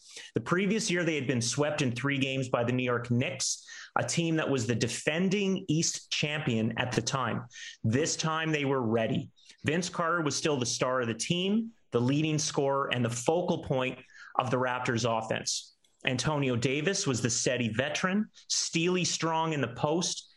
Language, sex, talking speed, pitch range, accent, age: English, male, 185 wpm, 125-165 Hz, American, 30-49